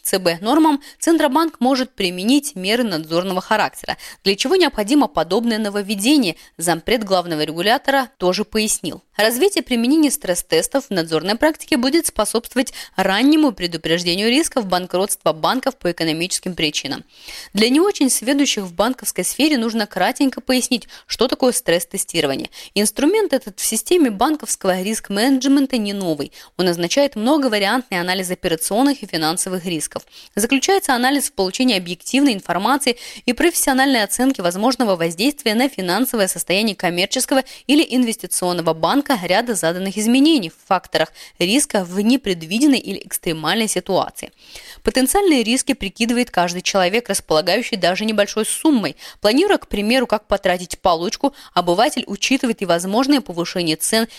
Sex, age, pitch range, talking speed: female, 20-39, 185-265 Hz, 125 wpm